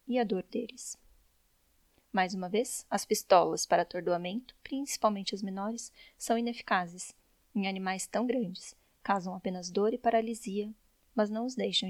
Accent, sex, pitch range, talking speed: Brazilian, female, 190-230 Hz, 145 wpm